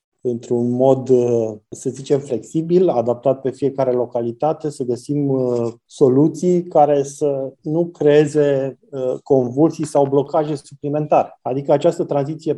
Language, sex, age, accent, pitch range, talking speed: Romanian, male, 20-39, native, 125-145 Hz, 110 wpm